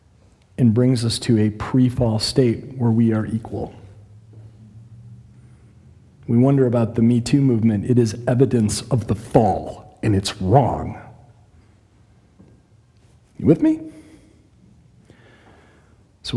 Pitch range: 115-160 Hz